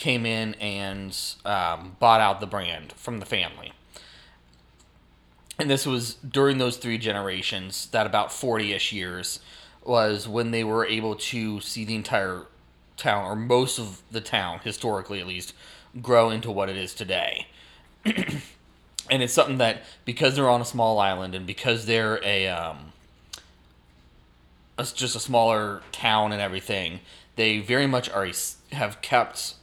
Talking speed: 150 wpm